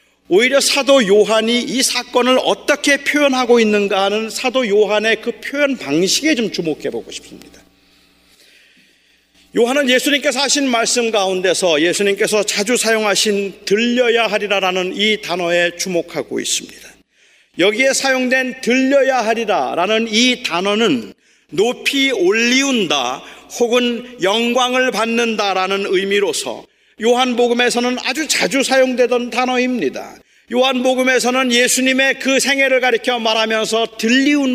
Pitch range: 225-270 Hz